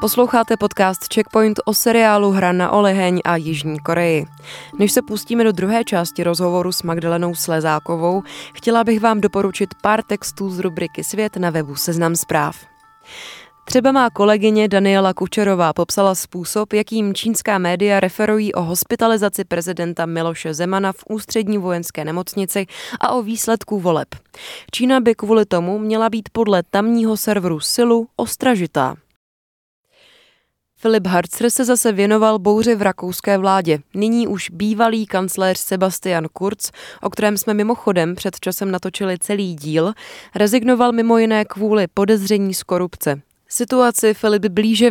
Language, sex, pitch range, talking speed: Czech, female, 175-220 Hz, 140 wpm